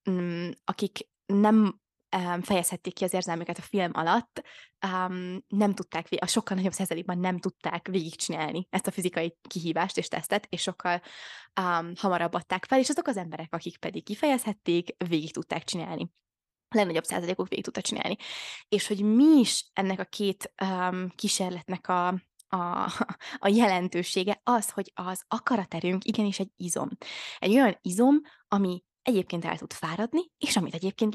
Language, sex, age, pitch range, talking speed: Hungarian, female, 20-39, 175-215 Hz, 150 wpm